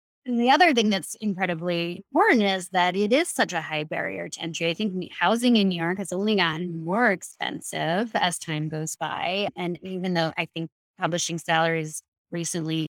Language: English